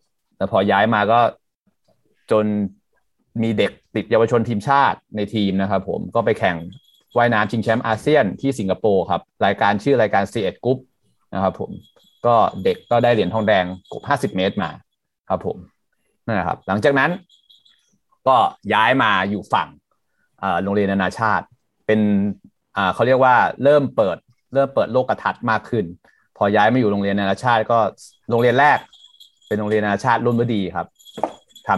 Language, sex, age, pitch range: Thai, male, 30-49, 100-125 Hz